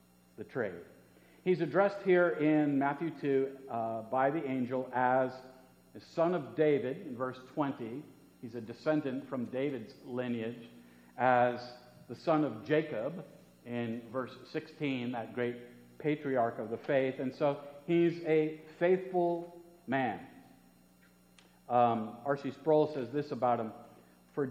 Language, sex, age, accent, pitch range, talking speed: English, male, 50-69, American, 115-150 Hz, 130 wpm